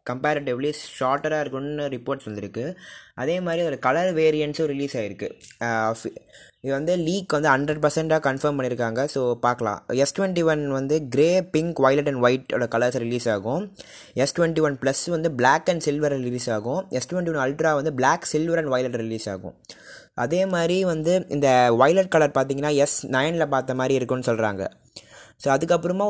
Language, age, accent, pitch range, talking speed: Tamil, 20-39, native, 130-165 Hz, 160 wpm